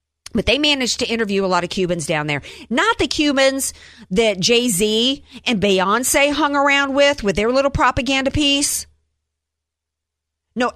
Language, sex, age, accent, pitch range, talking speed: English, female, 50-69, American, 170-235 Hz, 150 wpm